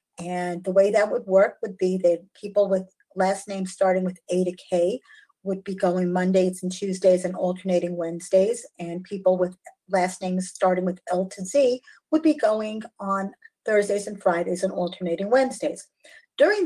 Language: English